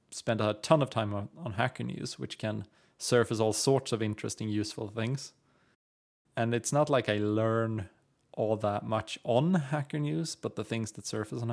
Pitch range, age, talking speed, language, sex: 110-130 Hz, 20-39, 185 wpm, English, male